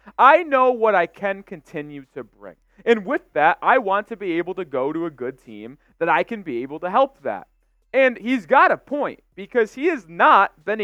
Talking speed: 220 wpm